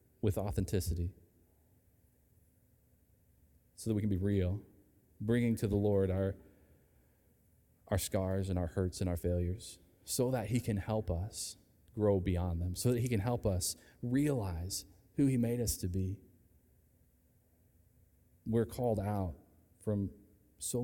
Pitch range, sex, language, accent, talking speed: 90-115 Hz, male, English, American, 140 wpm